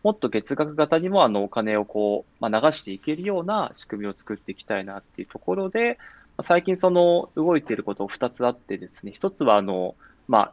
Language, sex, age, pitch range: Japanese, male, 20-39, 100-160 Hz